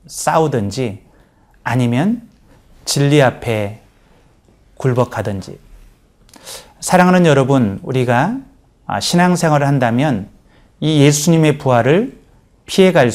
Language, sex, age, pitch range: Korean, male, 30-49, 125-175 Hz